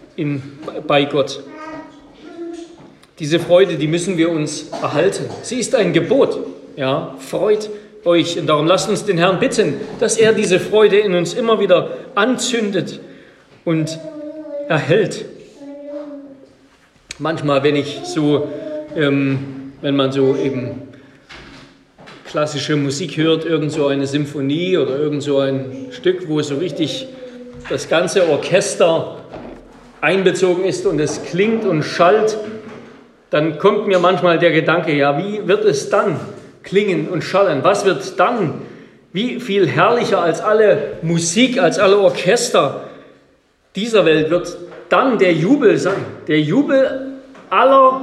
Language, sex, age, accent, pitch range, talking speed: German, male, 40-59, German, 150-230 Hz, 130 wpm